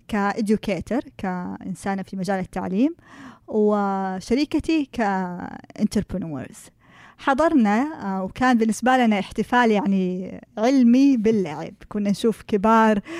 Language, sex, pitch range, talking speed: Arabic, female, 190-240 Hz, 80 wpm